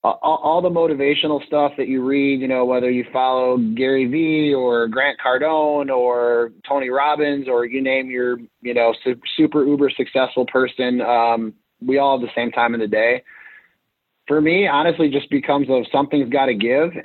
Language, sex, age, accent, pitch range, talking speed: English, male, 30-49, American, 120-140 Hz, 180 wpm